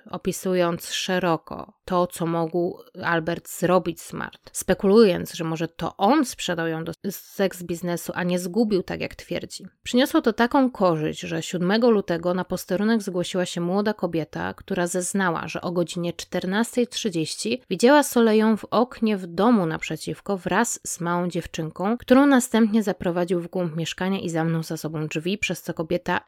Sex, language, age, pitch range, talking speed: female, Polish, 20-39, 175-215 Hz, 155 wpm